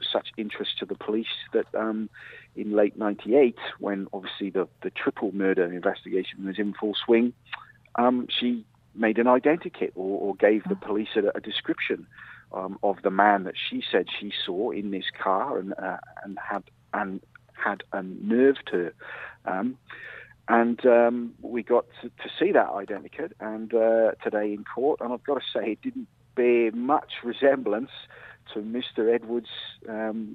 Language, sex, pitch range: English, male, 100-120 Hz